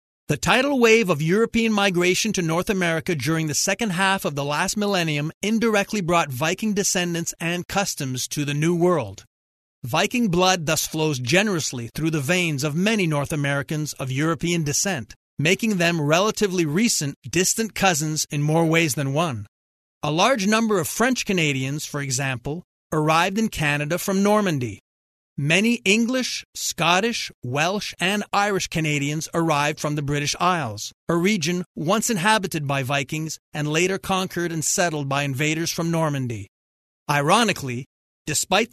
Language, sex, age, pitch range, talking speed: English, male, 40-59, 145-195 Hz, 145 wpm